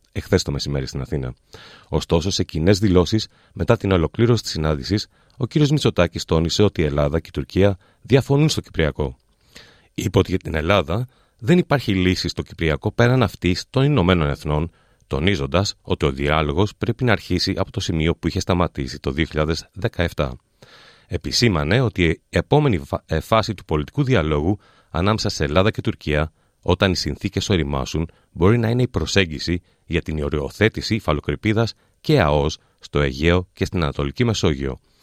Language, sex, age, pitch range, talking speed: Greek, male, 30-49, 75-105 Hz, 155 wpm